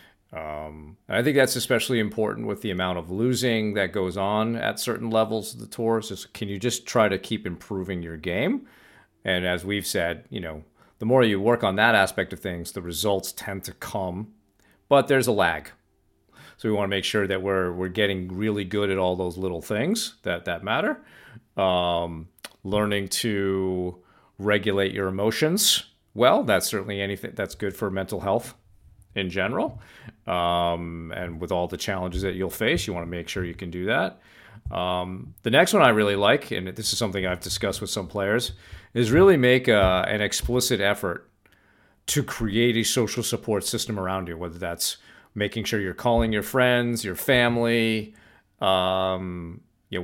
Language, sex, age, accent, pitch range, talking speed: English, male, 40-59, American, 95-115 Hz, 185 wpm